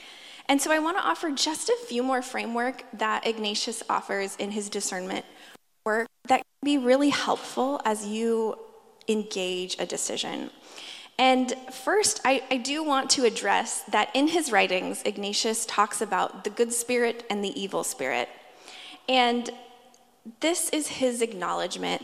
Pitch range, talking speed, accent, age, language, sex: 225-290 Hz, 145 wpm, American, 20-39, English, female